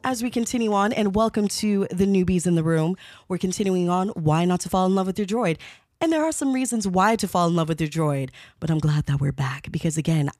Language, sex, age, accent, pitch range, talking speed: English, female, 20-39, American, 155-240 Hz, 260 wpm